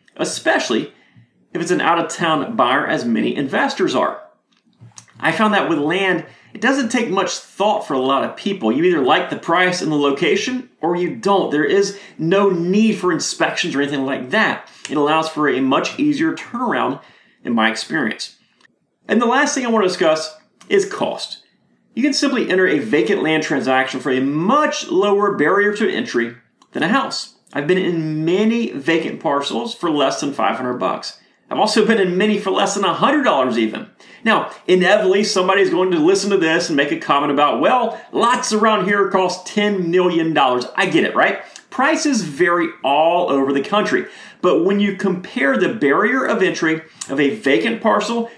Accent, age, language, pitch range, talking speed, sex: American, 30-49, English, 160-225 Hz, 180 wpm, male